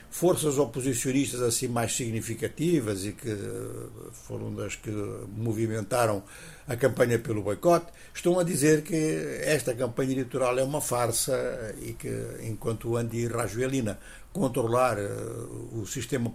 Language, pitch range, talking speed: Portuguese, 115-145 Hz, 125 wpm